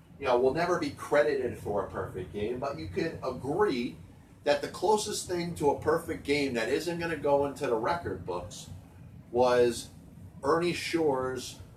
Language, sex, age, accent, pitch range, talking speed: English, male, 40-59, American, 125-170 Hz, 175 wpm